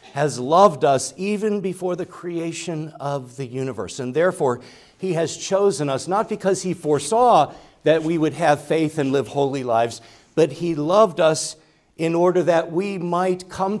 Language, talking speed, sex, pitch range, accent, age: English, 170 wpm, male, 125-175 Hz, American, 50-69